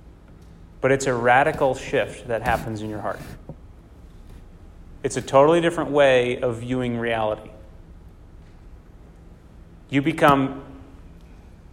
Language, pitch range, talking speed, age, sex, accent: English, 85-140 Hz, 100 wpm, 30-49, male, American